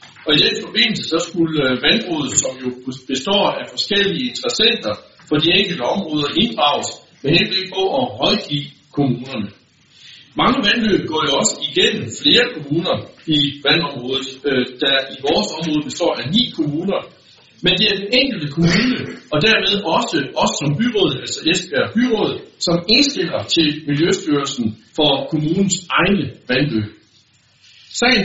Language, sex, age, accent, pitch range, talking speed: Danish, male, 60-79, native, 140-195 Hz, 145 wpm